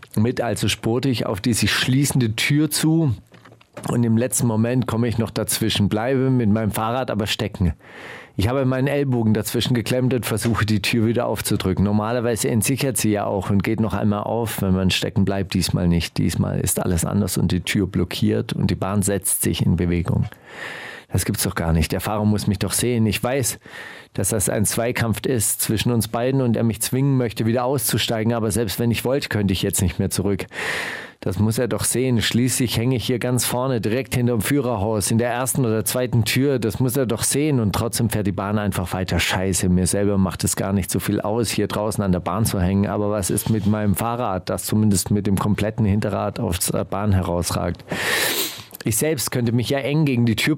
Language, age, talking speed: German, 40-59, 215 wpm